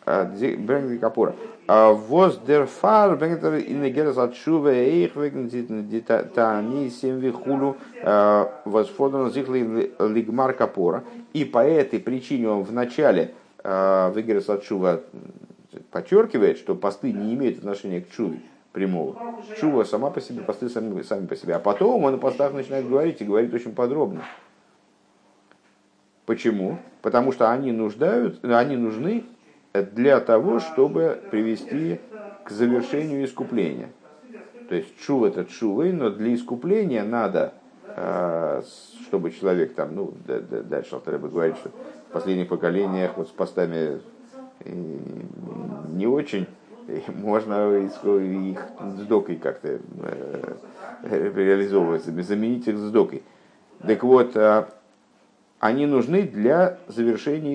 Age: 50-69